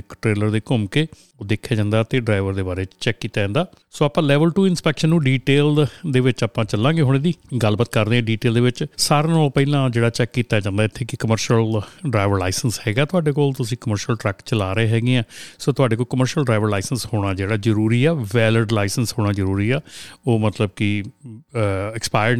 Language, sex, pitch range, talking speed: Punjabi, male, 110-130 Hz, 195 wpm